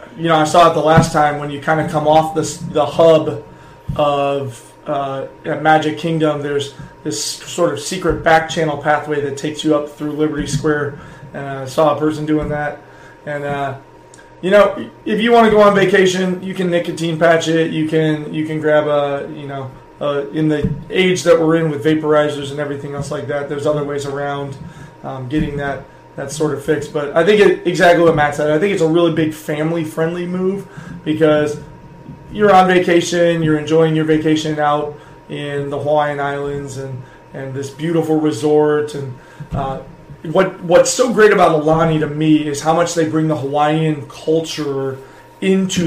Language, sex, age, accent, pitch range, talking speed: English, male, 30-49, American, 145-160 Hz, 190 wpm